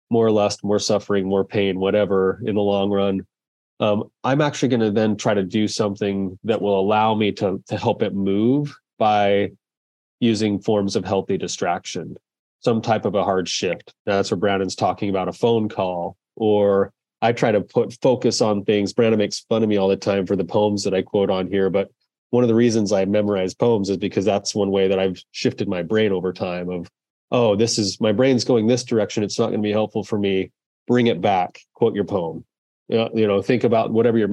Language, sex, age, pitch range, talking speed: English, male, 30-49, 95-110 Hz, 215 wpm